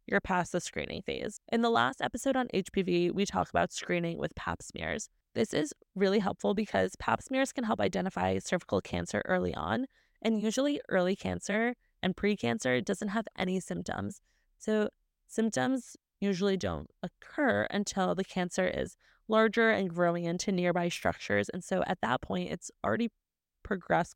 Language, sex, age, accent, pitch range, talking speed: English, female, 20-39, American, 175-225 Hz, 160 wpm